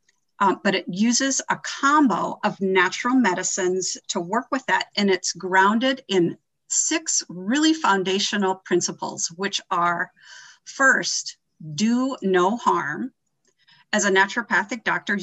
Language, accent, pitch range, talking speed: English, American, 185-250 Hz, 120 wpm